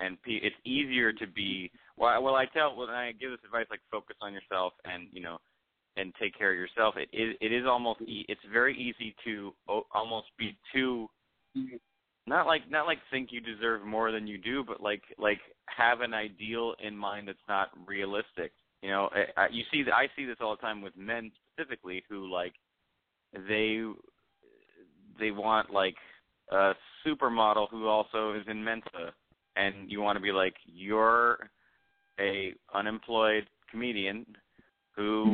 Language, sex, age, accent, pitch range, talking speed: English, male, 30-49, American, 105-130 Hz, 170 wpm